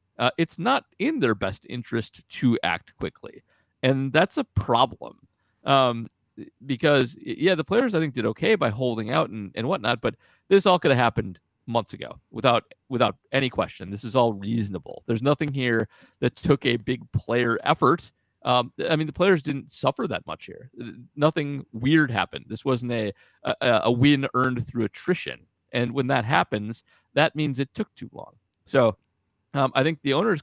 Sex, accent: male, American